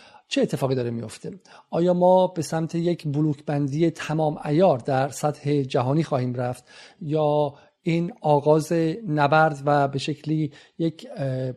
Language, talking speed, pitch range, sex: Persian, 130 wpm, 145-170 Hz, male